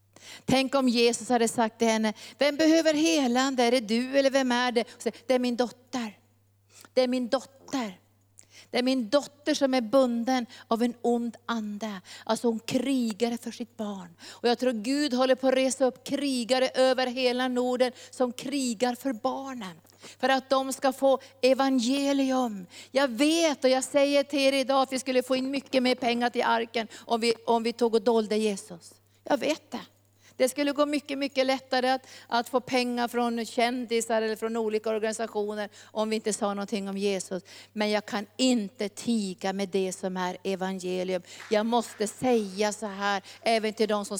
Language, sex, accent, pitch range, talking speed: Swedish, female, native, 200-255 Hz, 185 wpm